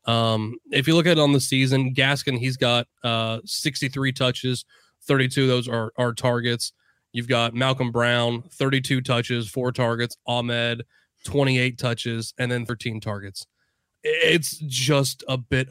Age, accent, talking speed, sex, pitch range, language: 20-39, American, 155 wpm, male, 115-130 Hz, English